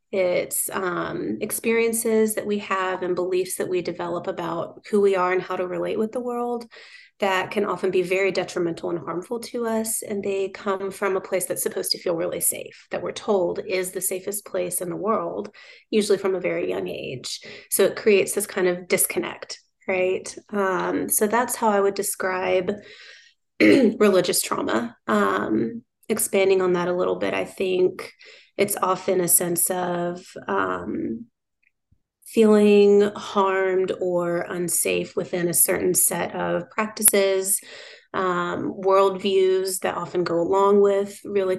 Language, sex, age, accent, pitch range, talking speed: English, female, 30-49, American, 180-215 Hz, 160 wpm